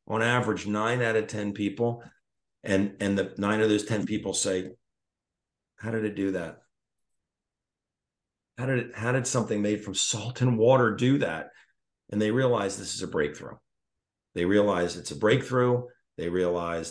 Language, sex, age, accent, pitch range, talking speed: English, male, 50-69, American, 95-125 Hz, 170 wpm